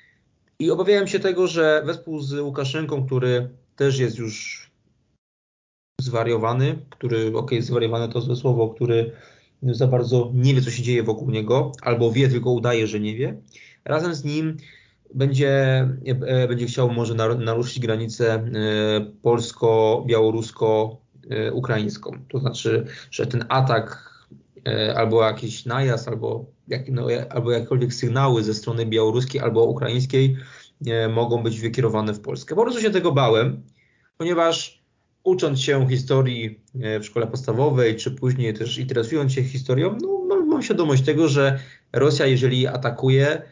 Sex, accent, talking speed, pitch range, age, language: male, native, 135 wpm, 115-135 Hz, 20-39, Polish